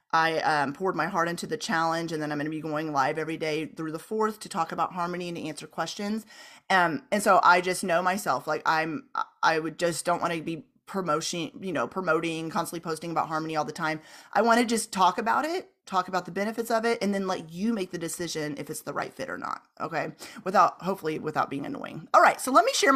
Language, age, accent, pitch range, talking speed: English, 30-49, American, 165-240 Hz, 240 wpm